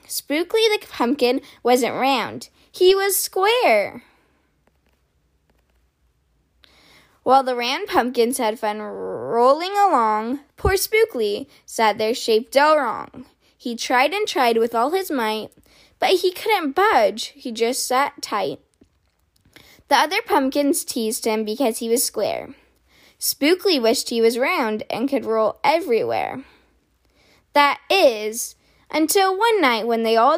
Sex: female